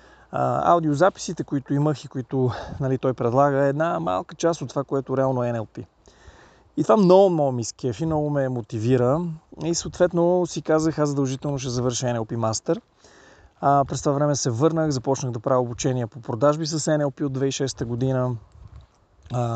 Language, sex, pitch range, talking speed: Bulgarian, male, 120-150 Hz, 165 wpm